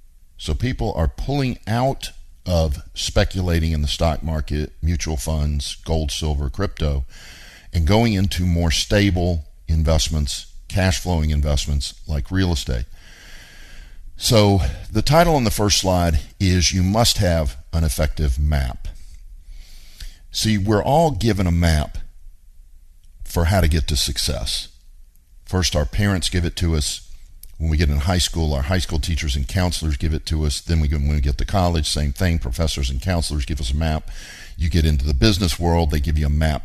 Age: 50-69